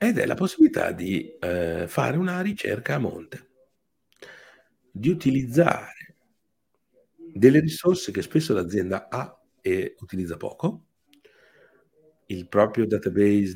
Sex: male